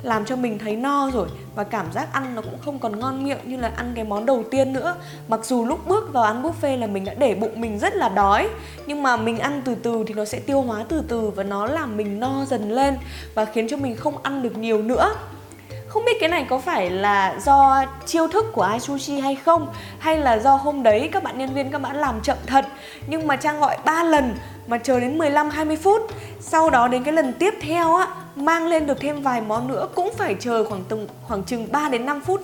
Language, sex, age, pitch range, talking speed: Vietnamese, female, 20-39, 220-295 Hz, 250 wpm